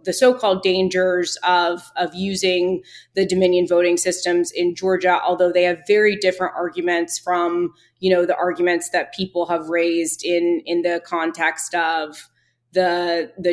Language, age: English, 20-39